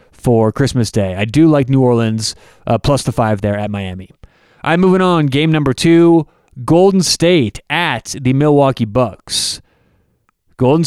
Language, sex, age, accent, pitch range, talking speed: English, male, 30-49, American, 120-160 Hz, 155 wpm